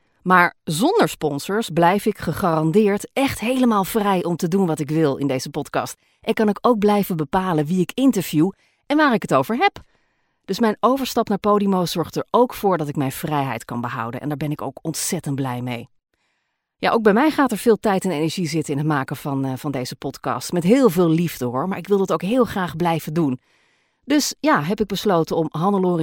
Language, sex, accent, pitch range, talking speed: Dutch, female, Dutch, 145-200 Hz, 220 wpm